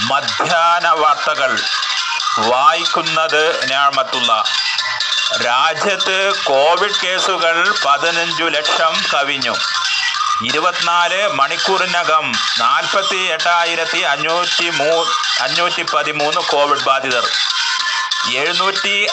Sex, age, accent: male, 30-49, native